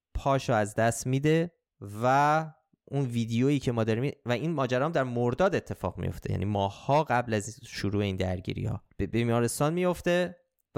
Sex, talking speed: male, 145 wpm